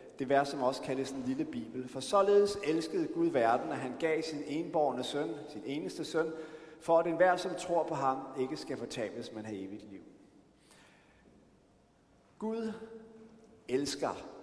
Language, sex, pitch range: Danish, male, 130-185 Hz